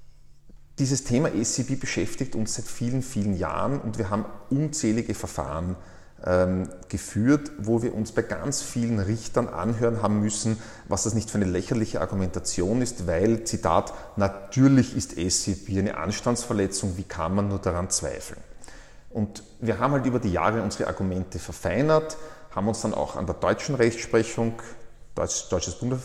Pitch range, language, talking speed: 100-115 Hz, German, 150 wpm